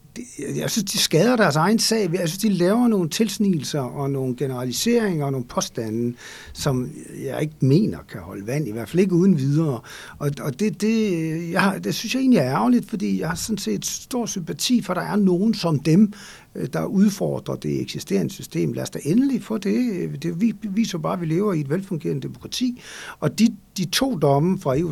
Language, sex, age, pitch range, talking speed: Danish, male, 60-79, 145-210 Hz, 205 wpm